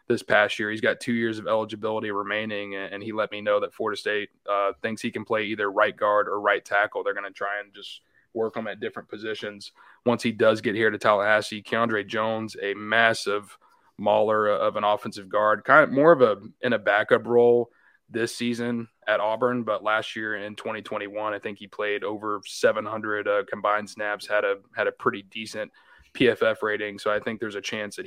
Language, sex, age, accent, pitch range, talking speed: English, male, 20-39, American, 105-115 Hz, 210 wpm